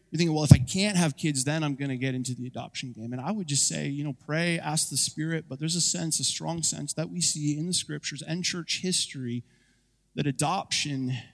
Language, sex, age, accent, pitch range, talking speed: English, male, 30-49, American, 140-175 Hz, 245 wpm